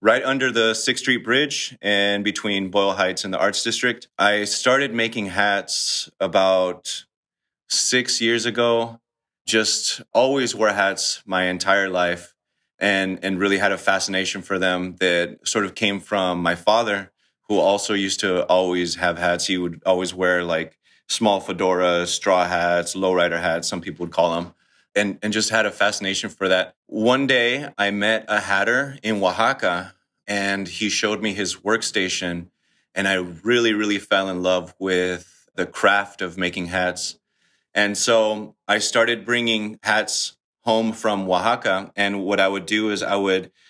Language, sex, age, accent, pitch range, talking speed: English, male, 30-49, American, 95-110 Hz, 165 wpm